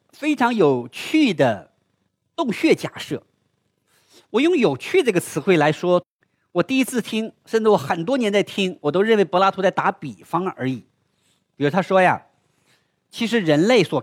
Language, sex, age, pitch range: Chinese, male, 50-69, 160-265 Hz